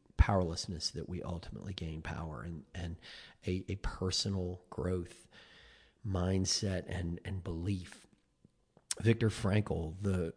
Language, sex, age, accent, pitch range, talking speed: English, male, 40-59, American, 90-100 Hz, 110 wpm